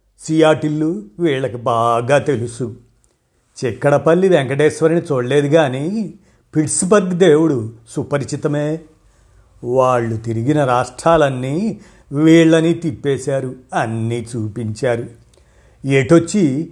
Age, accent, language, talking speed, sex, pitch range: 50-69, native, Telugu, 70 wpm, male, 125-170 Hz